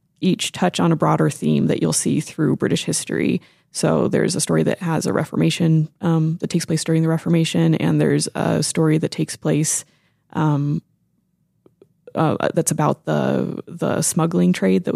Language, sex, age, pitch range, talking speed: English, female, 20-39, 145-175 Hz, 175 wpm